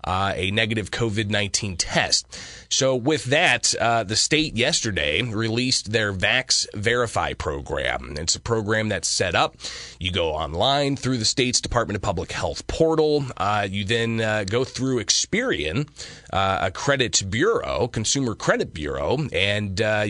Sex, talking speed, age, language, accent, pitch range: male, 150 wpm, 30-49, English, American, 95-125 Hz